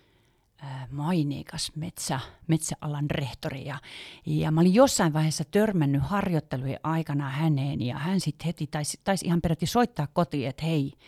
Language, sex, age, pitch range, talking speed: Finnish, female, 40-59, 140-175 Hz, 140 wpm